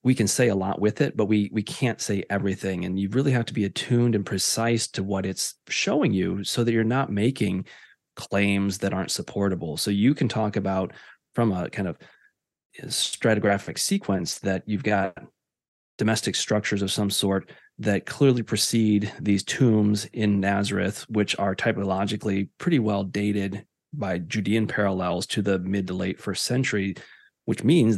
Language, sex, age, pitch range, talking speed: English, male, 30-49, 95-110 Hz, 170 wpm